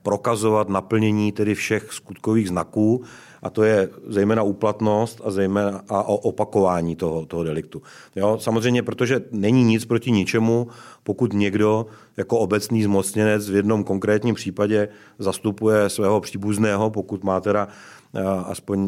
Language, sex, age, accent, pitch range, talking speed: Czech, male, 40-59, native, 95-110 Hz, 130 wpm